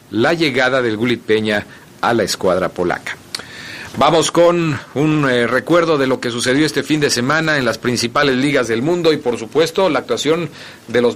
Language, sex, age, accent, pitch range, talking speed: Italian, male, 50-69, Mexican, 115-155 Hz, 190 wpm